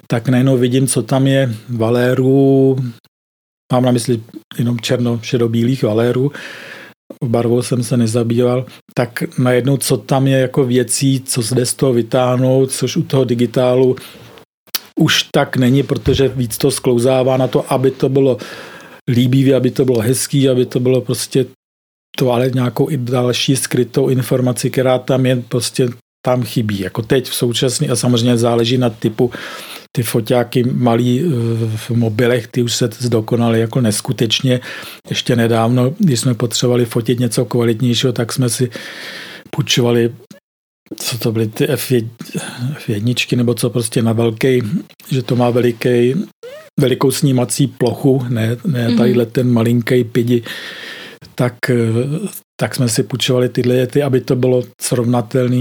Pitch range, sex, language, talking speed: 120-135 Hz, male, Czech, 145 wpm